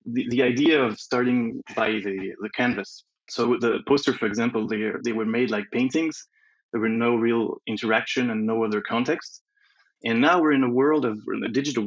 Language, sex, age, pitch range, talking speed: English, male, 20-39, 110-135 Hz, 185 wpm